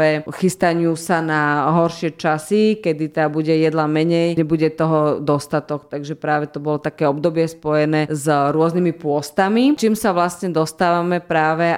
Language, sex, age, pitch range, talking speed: Slovak, female, 20-39, 155-170 Hz, 145 wpm